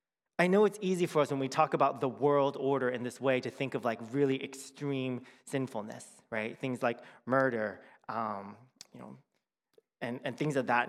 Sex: male